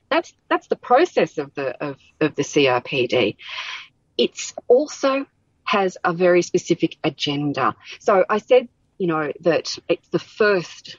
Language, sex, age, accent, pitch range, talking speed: English, female, 40-59, Australian, 155-205 Hz, 140 wpm